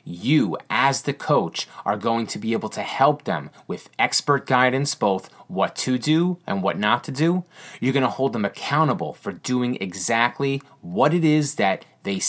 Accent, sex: American, male